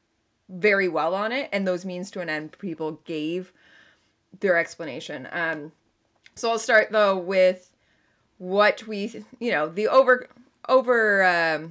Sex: female